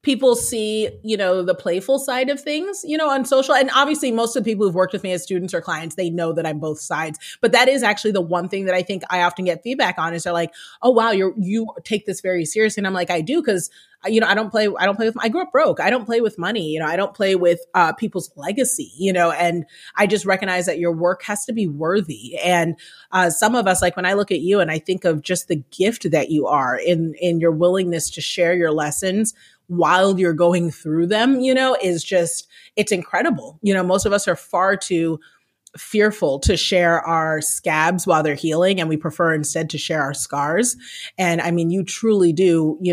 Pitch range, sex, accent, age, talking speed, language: 165-210 Hz, female, American, 30-49, 245 wpm, English